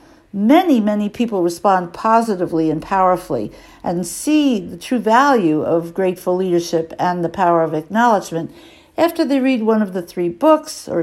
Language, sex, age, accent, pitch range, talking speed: English, female, 60-79, American, 180-275 Hz, 160 wpm